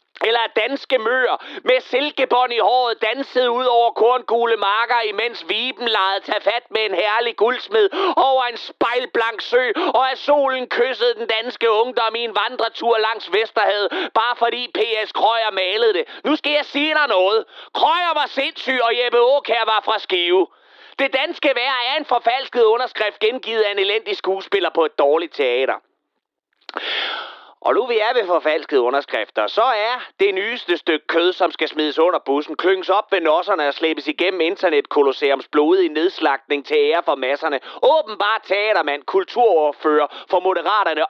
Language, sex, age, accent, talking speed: Danish, male, 30-49, native, 165 wpm